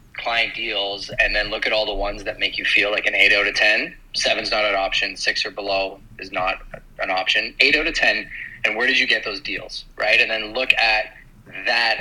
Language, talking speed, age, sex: English, 235 wpm, 30-49, male